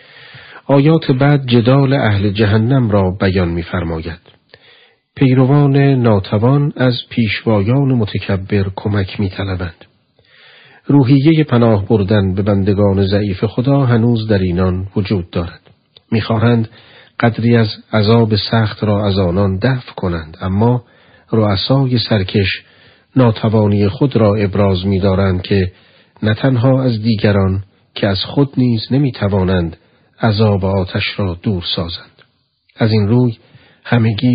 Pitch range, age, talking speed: 100-120 Hz, 40-59, 120 wpm